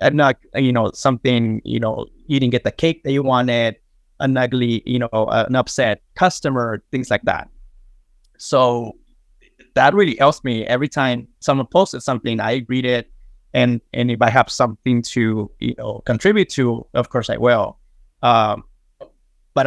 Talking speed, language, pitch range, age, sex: 170 wpm, English, 120-135 Hz, 20-39, male